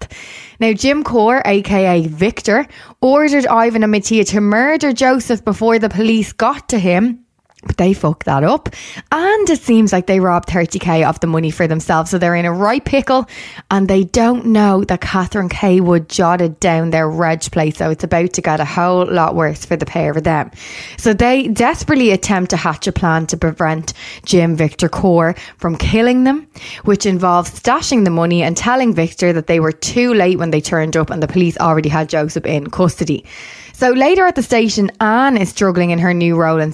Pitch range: 170-225 Hz